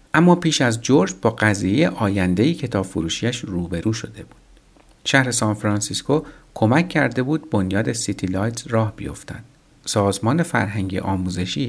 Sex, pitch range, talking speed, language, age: male, 95-135 Hz, 120 wpm, Persian, 50-69